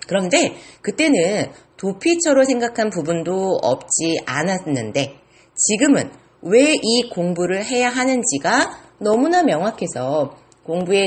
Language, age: Korean, 40-59